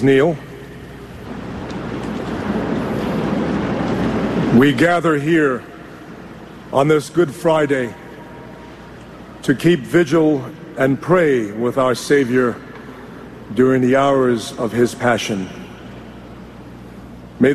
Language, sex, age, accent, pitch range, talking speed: English, male, 50-69, American, 110-140 Hz, 80 wpm